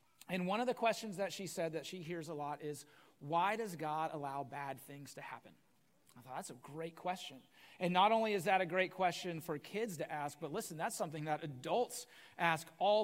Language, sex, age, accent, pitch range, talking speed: English, male, 30-49, American, 160-205 Hz, 220 wpm